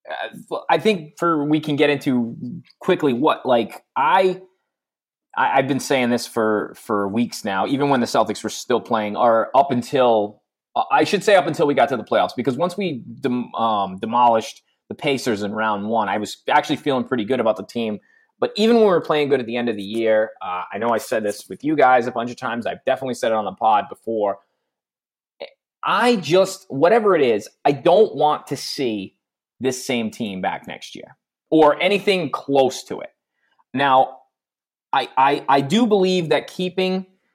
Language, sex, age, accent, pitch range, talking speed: English, male, 20-39, American, 115-155 Hz, 200 wpm